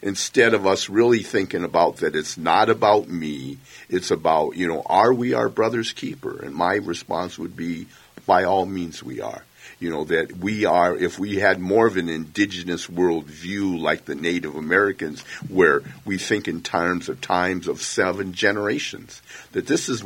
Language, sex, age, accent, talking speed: English, male, 50-69, American, 180 wpm